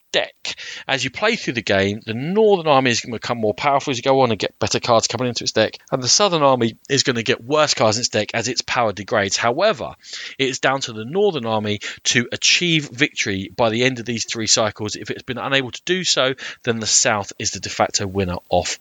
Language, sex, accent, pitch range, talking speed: English, male, British, 110-150 Hz, 250 wpm